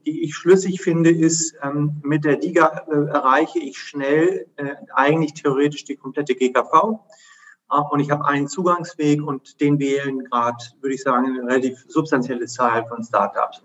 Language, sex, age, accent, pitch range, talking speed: German, male, 30-49, German, 140-160 Hz, 165 wpm